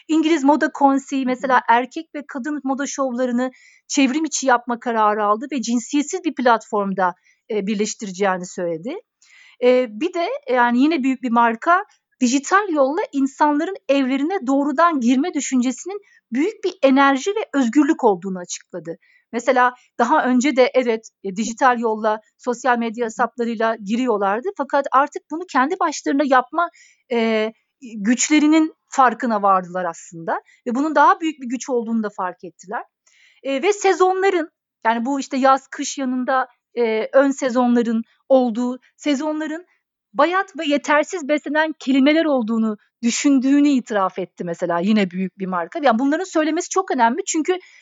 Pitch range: 235-310 Hz